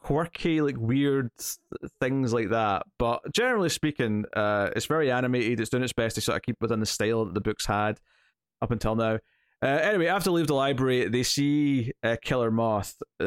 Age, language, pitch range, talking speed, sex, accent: 20-39, English, 110-125 Hz, 205 wpm, male, British